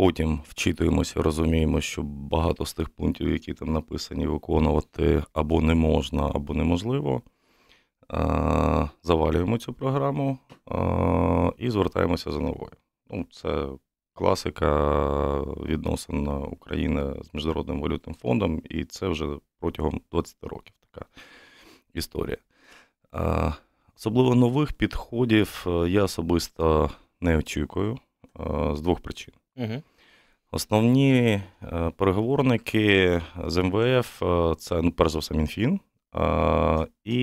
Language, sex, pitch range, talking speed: Ukrainian, male, 80-100 Hz, 95 wpm